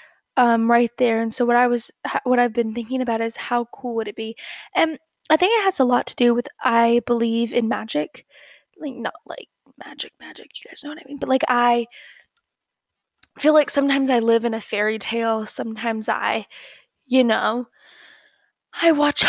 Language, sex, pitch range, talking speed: English, female, 230-270 Hz, 195 wpm